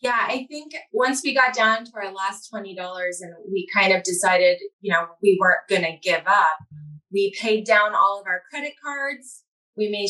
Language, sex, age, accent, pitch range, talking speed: English, female, 20-39, American, 190-260 Hz, 200 wpm